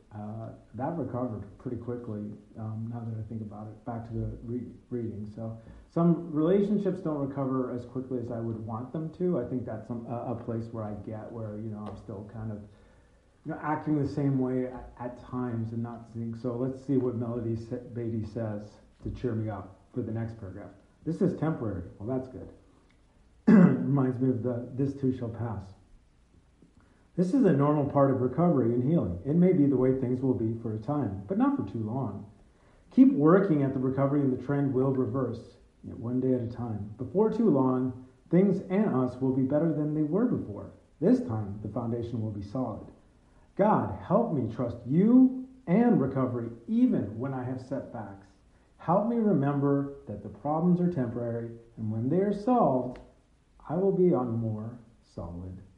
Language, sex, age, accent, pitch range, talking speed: English, male, 40-59, American, 110-140 Hz, 190 wpm